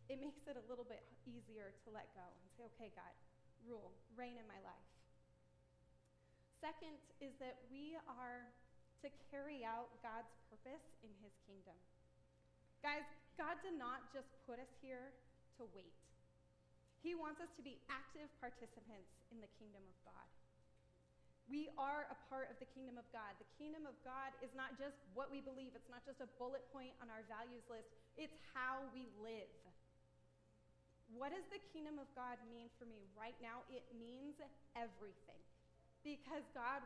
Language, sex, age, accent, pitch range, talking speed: English, female, 30-49, American, 205-275 Hz, 170 wpm